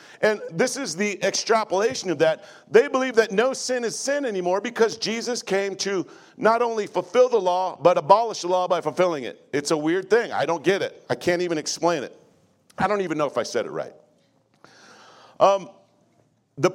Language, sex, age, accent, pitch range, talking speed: English, male, 50-69, American, 180-255 Hz, 195 wpm